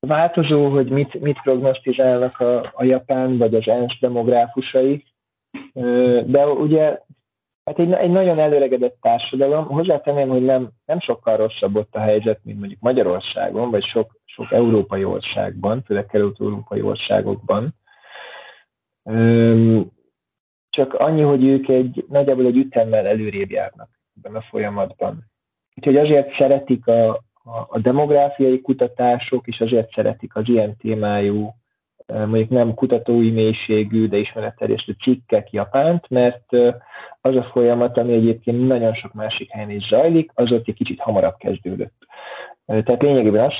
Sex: male